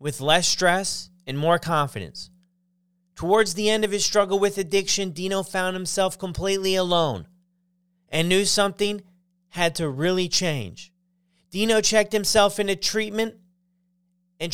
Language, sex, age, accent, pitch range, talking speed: English, male, 30-49, American, 165-195 Hz, 130 wpm